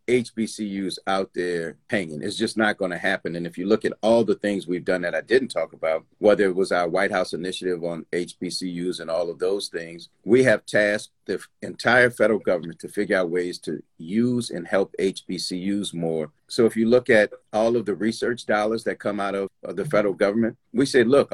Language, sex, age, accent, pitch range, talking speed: English, male, 40-59, American, 95-115 Hz, 215 wpm